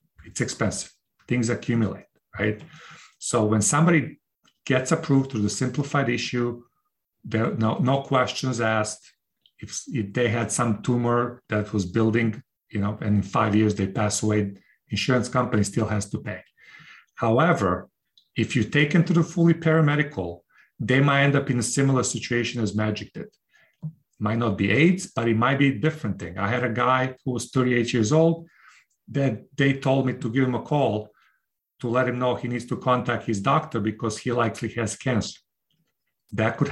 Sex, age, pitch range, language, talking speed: male, 40-59, 110-140 Hz, English, 180 wpm